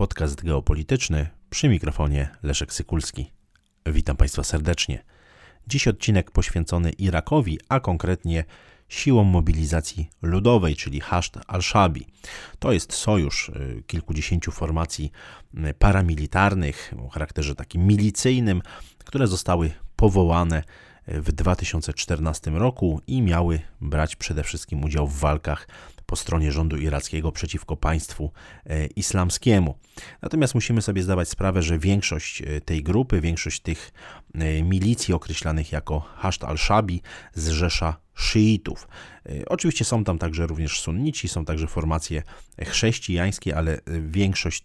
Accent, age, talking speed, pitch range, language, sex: native, 30-49, 110 wpm, 80-100 Hz, Polish, male